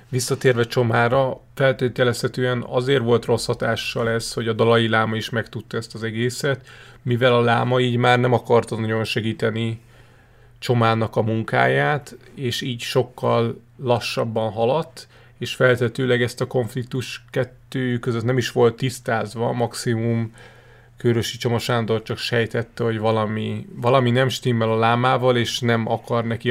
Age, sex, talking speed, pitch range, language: 30-49, male, 140 wpm, 115-125 Hz, Hungarian